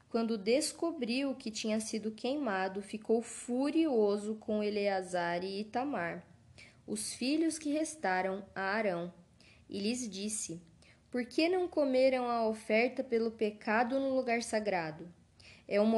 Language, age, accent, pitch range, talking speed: Portuguese, 10-29, Brazilian, 200-255 Hz, 130 wpm